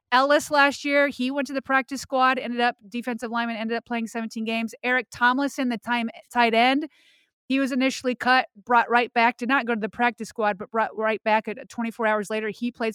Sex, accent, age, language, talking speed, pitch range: female, American, 30-49, English, 220 wpm, 220-255 Hz